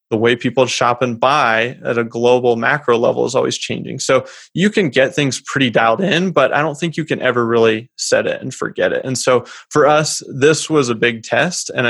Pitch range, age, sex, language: 120-145 Hz, 20-39, male, English